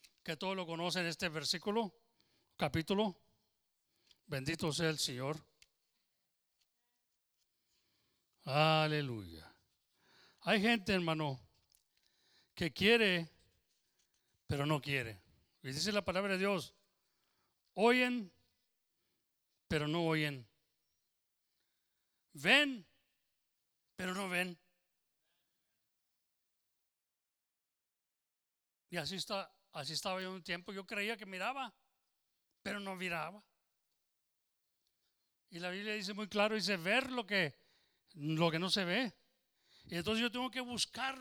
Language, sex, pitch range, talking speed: English, male, 160-230 Hz, 100 wpm